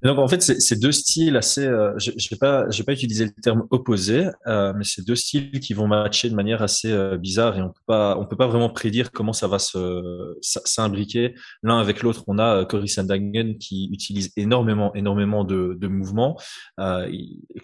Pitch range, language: 100-120 Hz, French